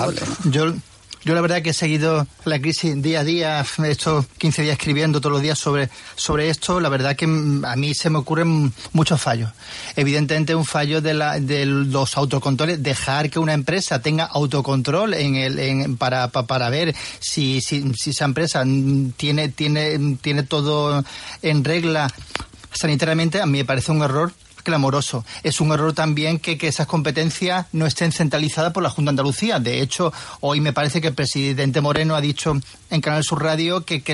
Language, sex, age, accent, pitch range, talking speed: Spanish, male, 30-49, Spanish, 145-165 Hz, 185 wpm